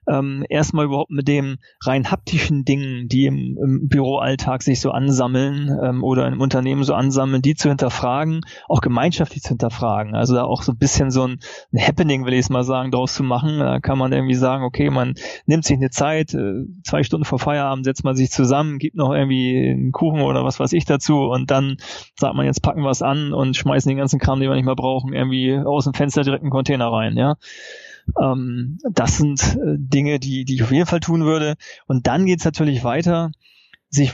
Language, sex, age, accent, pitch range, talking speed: German, male, 20-39, German, 130-150 Hz, 215 wpm